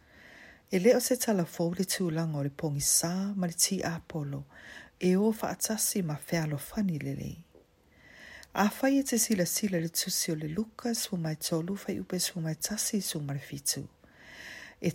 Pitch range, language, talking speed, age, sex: 155-210 Hz, English, 145 wpm, 50-69, female